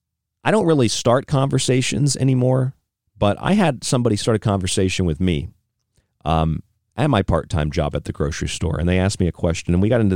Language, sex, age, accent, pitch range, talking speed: English, male, 40-59, American, 80-105 Hz, 200 wpm